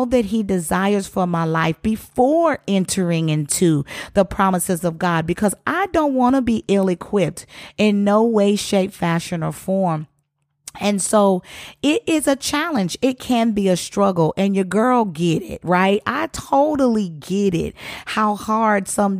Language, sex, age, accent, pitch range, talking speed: English, female, 40-59, American, 175-215 Hz, 160 wpm